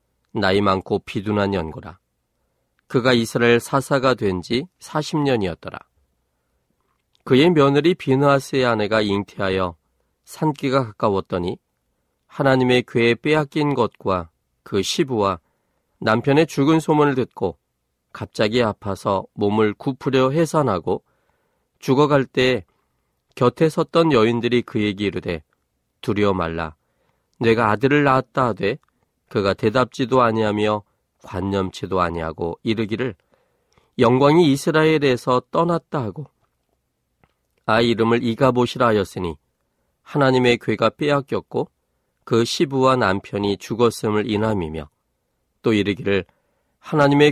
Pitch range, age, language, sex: 100-135 Hz, 40-59, Korean, male